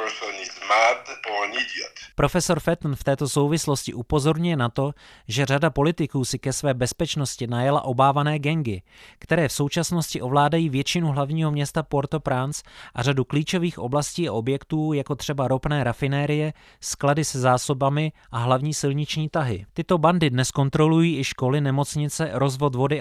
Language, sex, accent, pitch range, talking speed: Czech, male, native, 135-160 Hz, 140 wpm